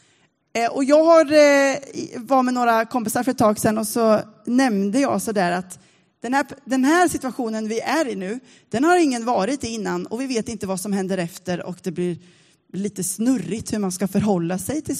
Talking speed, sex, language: 205 wpm, female, Swedish